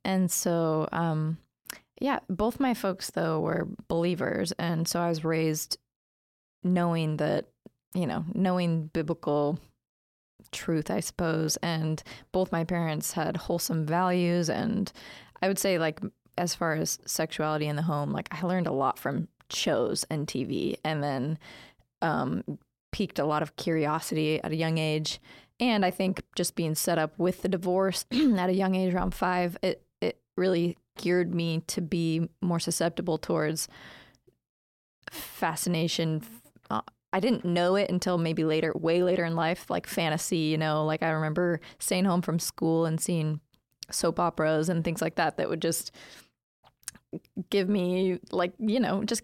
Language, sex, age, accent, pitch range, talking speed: English, female, 20-39, American, 155-185 Hz, 160 wpm